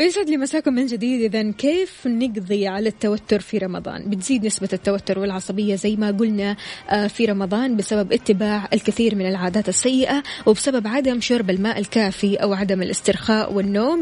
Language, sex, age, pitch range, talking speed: Arabic, female, 20-39, 200-245 Hz, 155 wpm